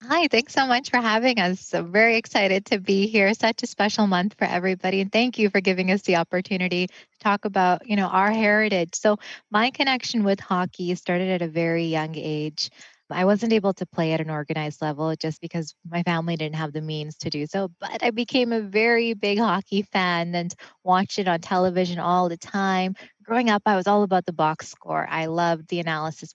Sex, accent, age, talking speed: female, American, 20-39, 215 wpm